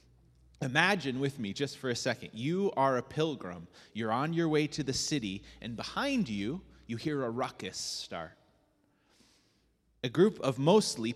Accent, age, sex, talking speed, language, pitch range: American, 30-49, male, 160 wpm, English, 120-155 Hz